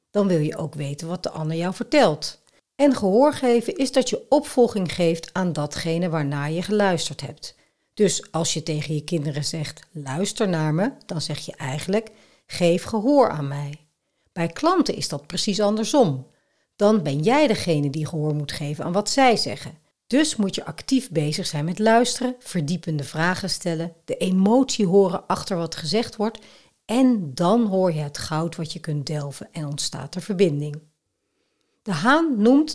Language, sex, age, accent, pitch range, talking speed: Dutch, female, 60-79, Dutch, 155-210 Hz, 175 wpm